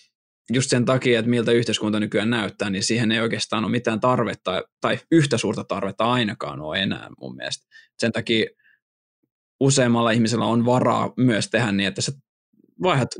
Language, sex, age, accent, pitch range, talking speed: Finnish, male, 20-39, native, 110-125 Hz, 165 wpm